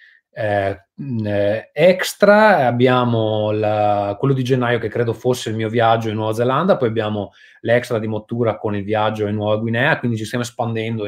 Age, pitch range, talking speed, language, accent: 20-39, 110-150 Hz, 170 wpm, Italian, native